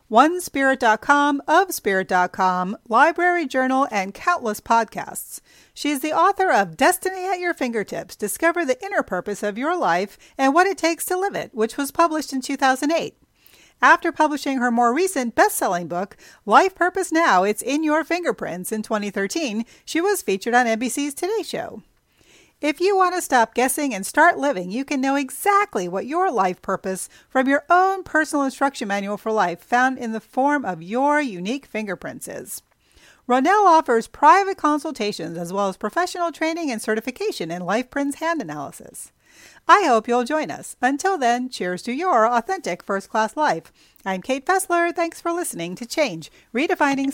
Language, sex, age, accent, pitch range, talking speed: English, female, 40-59, American, 215-335 Hz, 165 wpm